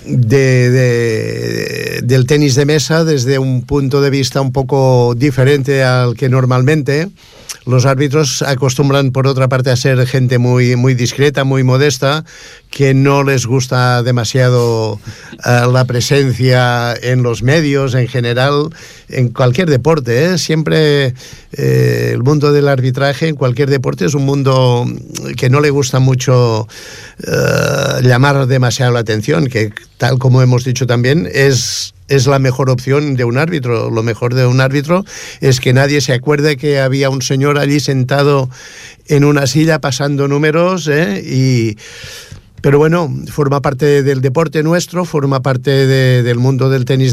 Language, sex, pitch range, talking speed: Italian, male, 125-145 Hz, 150 wpm